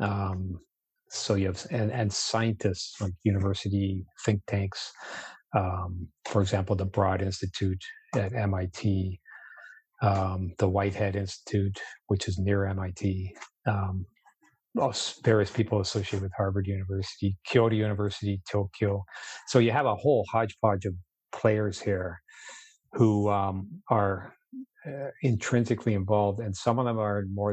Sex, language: male, English